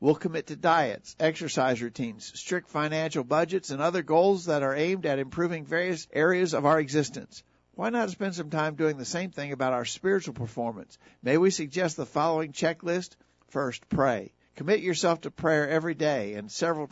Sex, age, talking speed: male, 50-69, 180 wpm